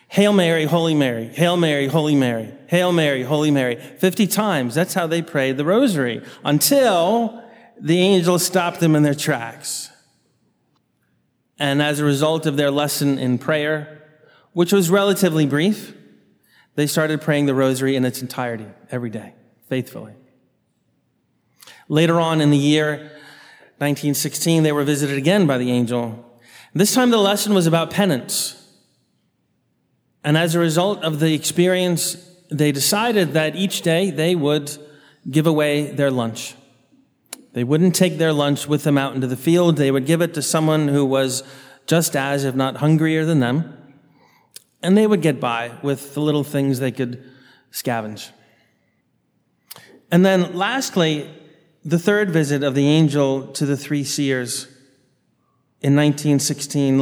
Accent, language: American, English